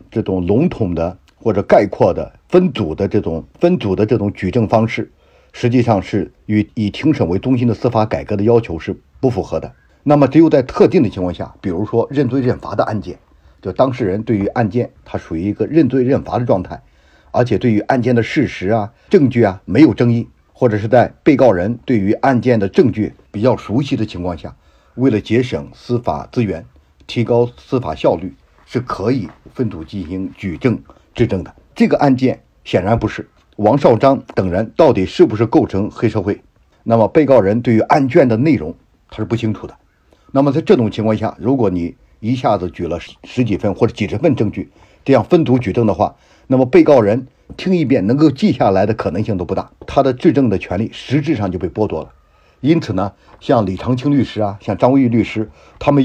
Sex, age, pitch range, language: male, 50-69, 95-130 Hz, Chinese